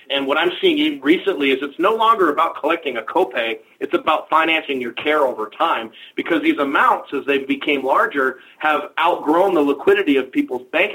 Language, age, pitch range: English, 30-49, 140-195 Hz